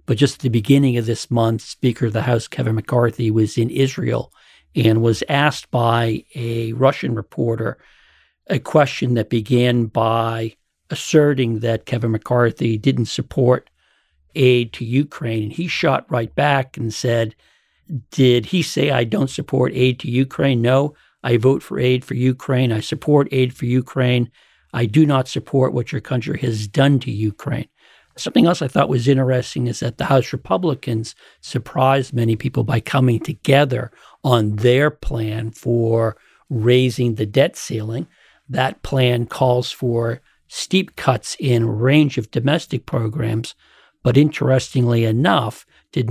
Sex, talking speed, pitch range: male, 155 wpm, 115-135 Hz